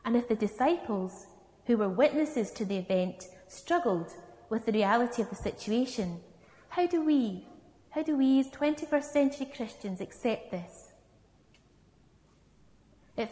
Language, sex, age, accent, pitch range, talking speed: English, female, 30-49, British, 210-275 Hz, 135 wpm